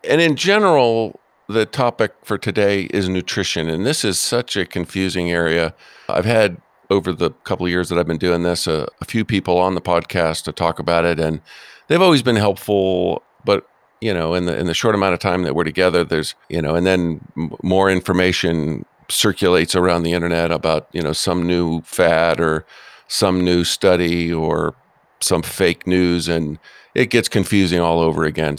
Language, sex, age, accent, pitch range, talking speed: English, male, 50-69, American, 85-100 Hz, 190 wpm